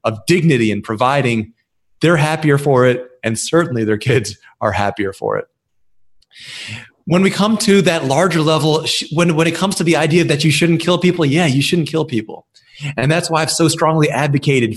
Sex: male